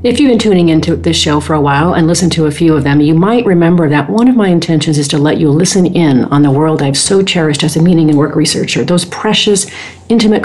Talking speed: 265 wpm